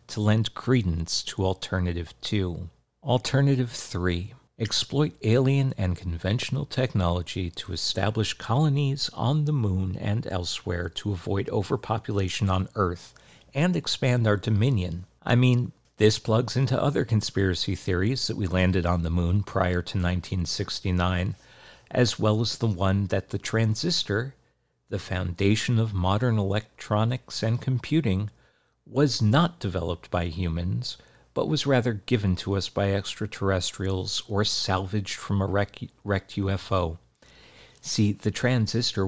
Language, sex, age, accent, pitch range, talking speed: English, male, 50-69, American, 95-115 Hz, 130 wpm